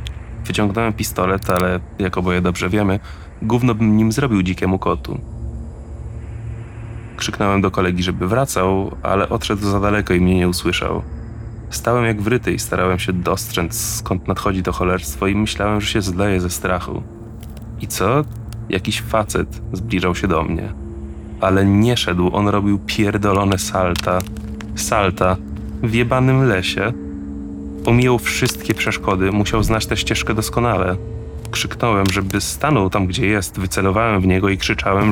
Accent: native